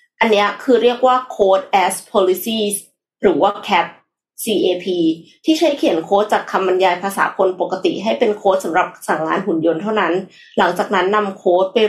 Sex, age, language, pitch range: female, 20-39, Thai, 190-265 Hz